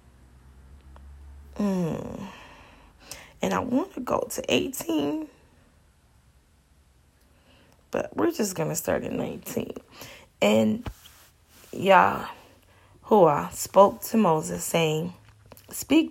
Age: 20-39